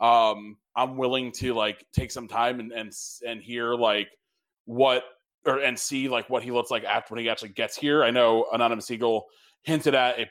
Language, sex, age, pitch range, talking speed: English, male, 20-39, 110-130 Hz, 205 wpm